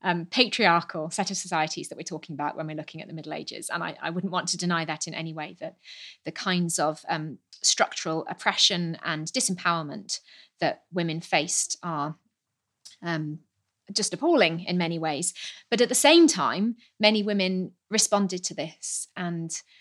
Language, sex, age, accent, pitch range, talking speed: English, female, 30-49, British, 165-205 Hz, 175 wpm